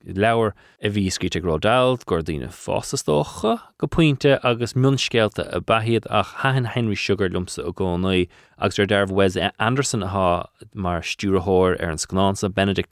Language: English